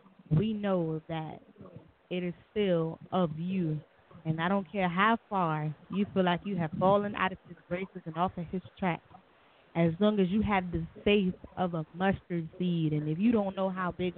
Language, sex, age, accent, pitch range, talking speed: English, female, 20-39, American, 165-190 Hz, 200 wpm